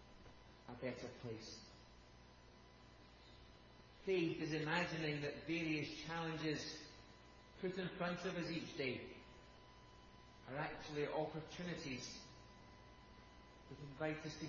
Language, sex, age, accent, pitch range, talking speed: English, male, 40-59, British, 115-160 Hz, 95 wpm